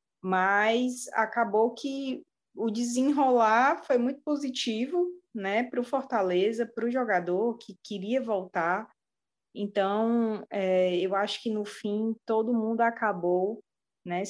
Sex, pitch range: female, 190-240 Hz